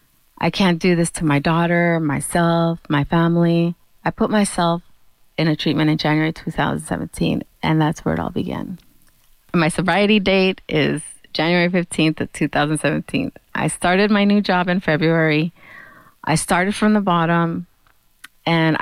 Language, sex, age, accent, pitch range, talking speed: English, female, 30-49, American, 155-180 Hz, 145 wpm